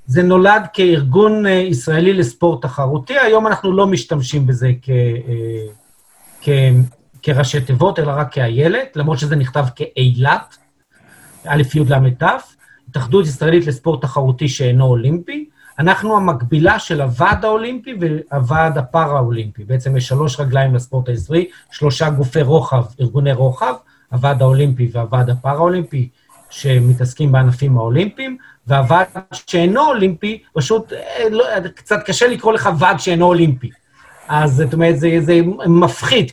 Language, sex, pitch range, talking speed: Hebrew, male, 135-185 Hz, 120 wpm